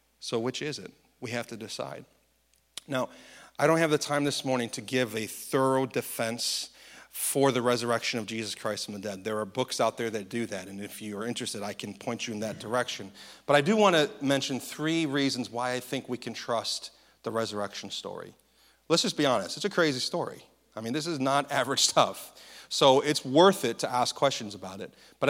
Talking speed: 220 wpm